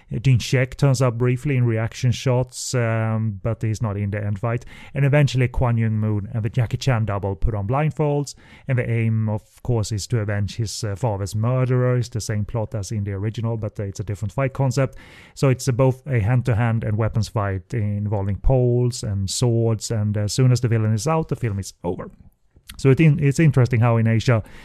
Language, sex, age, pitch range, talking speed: English, male, 30-49, 110-130 Hz, 210 wpm